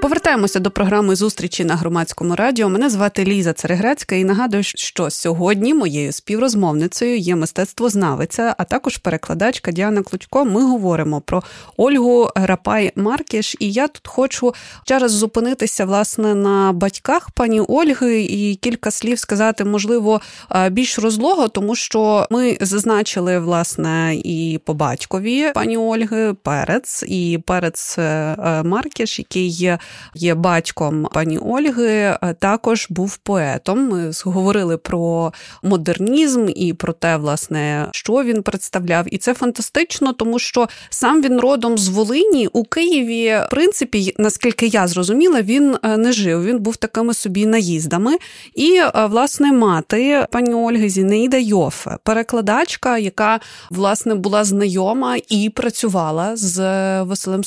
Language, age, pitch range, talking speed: Ukrainian, 30-49, 180-240 Hz, 125 wpm